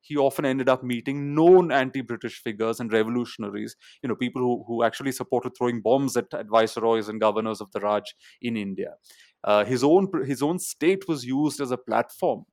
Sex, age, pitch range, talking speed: male, 30-49, 115-140 Hz, 185 wpm